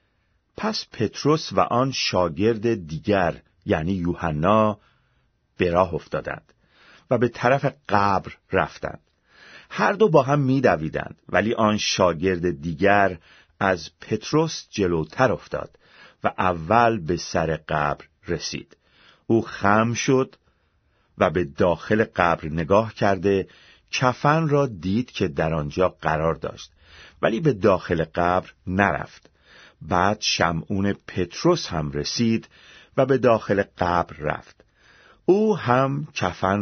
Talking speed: 115 wpm